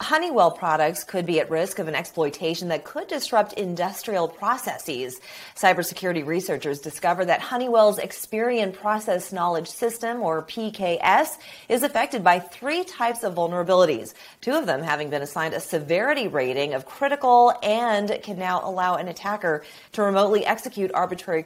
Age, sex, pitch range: 30-49, female, 160-215 Hz